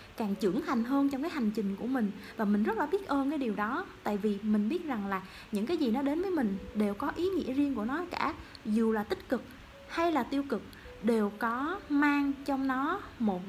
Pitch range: 210-290 Hz